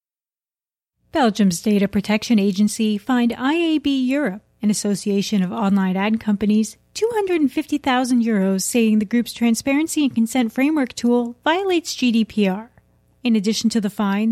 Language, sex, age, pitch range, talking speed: English, female, 30-49, 210-285 Hz, 120 wpm